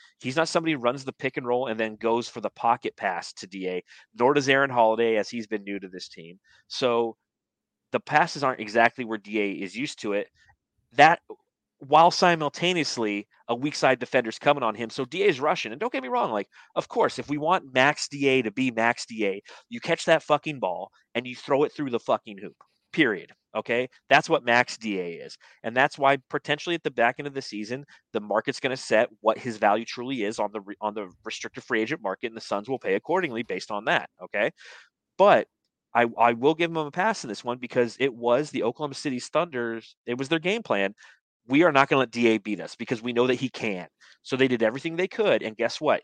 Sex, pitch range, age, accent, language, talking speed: male, 115-150 Hz, 30-49, American, English, 230 wpm